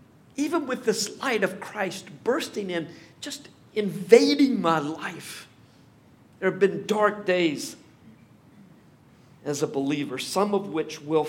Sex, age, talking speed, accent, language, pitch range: male, 50-69, 130 wpm, American, English, 155-220 Hz